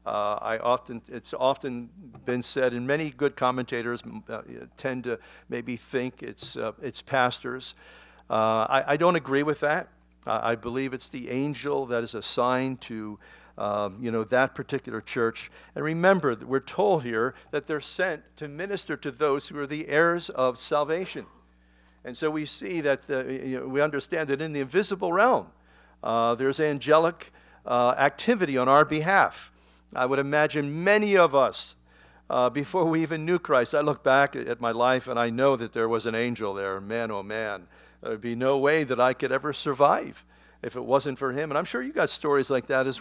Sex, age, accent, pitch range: male, 50-69, American, 115-145 Hz